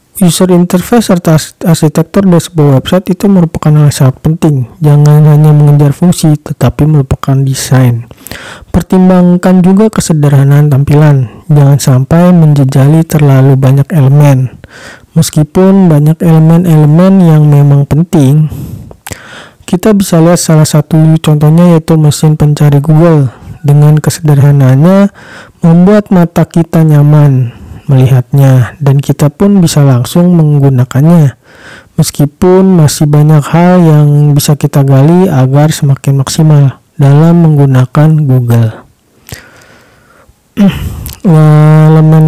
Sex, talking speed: male, 105 wpm